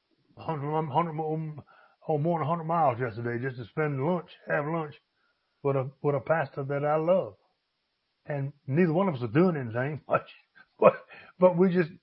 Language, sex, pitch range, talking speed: English, male, 130-165 Hz, 180 wpm